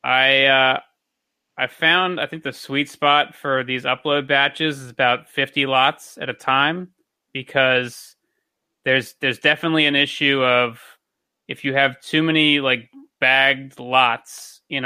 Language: English